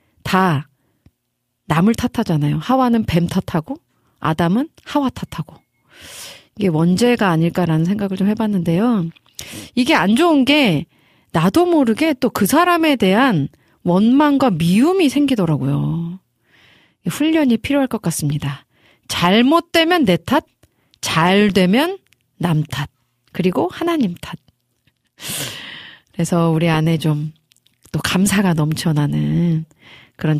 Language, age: Korean, 30-49